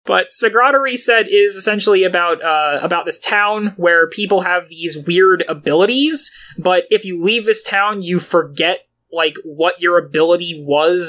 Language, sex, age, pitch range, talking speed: English, male, 20-39, 160-195 Hz, 155 wpm